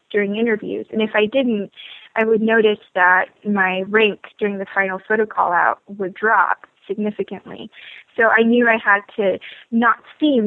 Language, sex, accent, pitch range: English, female, American, 195-230 Hz